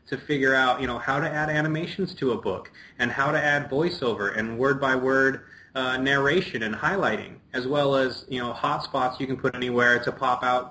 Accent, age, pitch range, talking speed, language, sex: American, 30-49, 125-150 Hz, 200 wpm, English, male